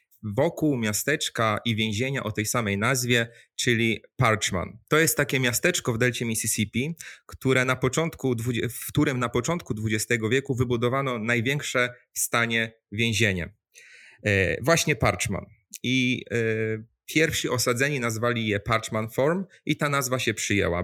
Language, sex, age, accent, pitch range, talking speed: Polish, male, 30-49, native, 110-130 Hz, 130 wpm